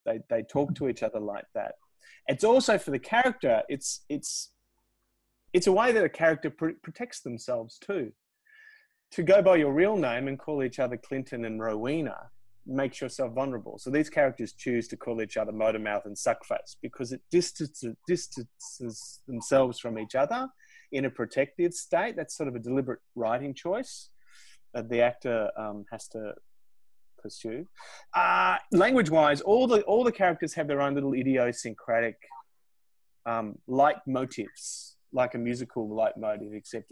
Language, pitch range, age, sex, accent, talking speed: English, 115-155 Hz, 30-49, male, Australian, 165 wpm